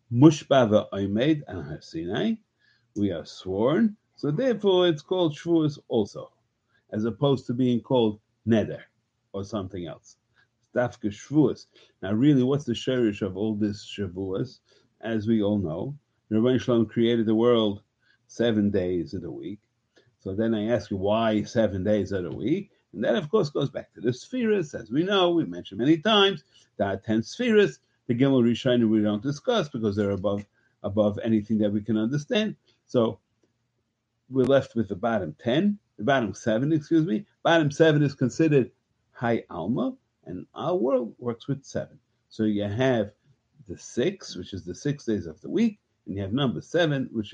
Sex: male